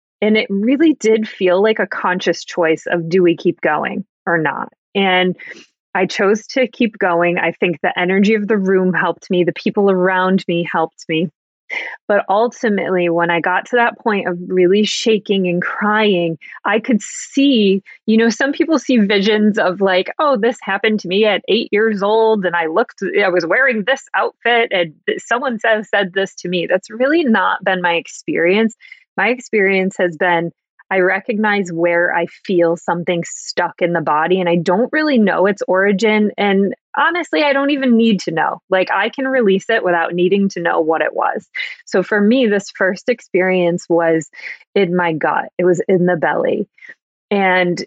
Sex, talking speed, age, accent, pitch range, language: female, 185 wpm, 20-39, American, 180-220 Hz, English